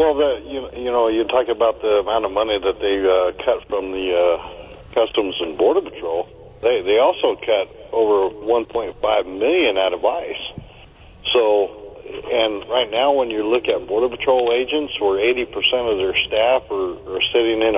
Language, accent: English, American